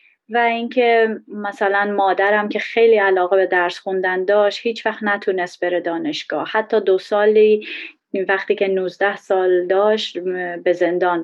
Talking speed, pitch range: 145 wpm, 190-225 Hz